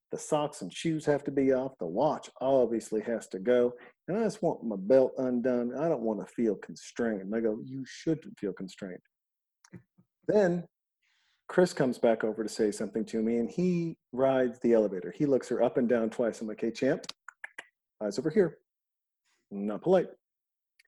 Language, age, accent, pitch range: English, 40-59, American, 115-155 Hz